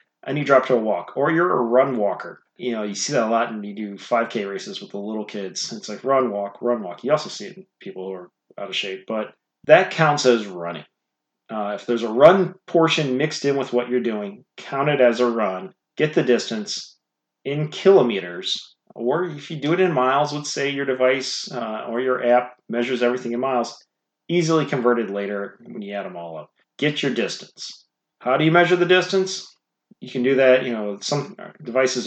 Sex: male